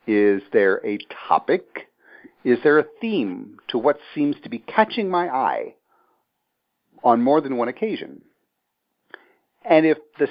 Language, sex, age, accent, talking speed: English, male, 50-69, American, 140 wpm